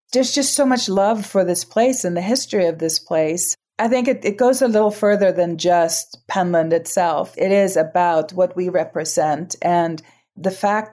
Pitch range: 170-210 Hz